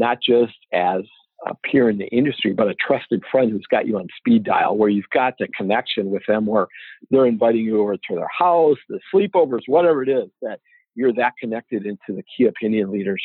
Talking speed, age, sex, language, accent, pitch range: 215 wpm, 50-69, male, English, American, 105-125 Hz